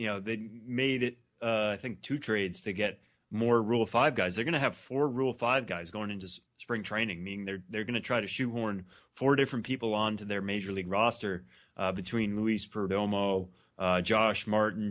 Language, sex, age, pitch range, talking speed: English, male, 20-39, 100-115 Hz, 210 wpm